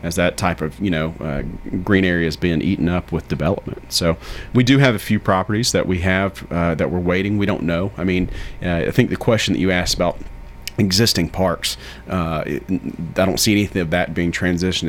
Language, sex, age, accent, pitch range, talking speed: English, male, 30-49, American, 85-100 Hz, 215 wpm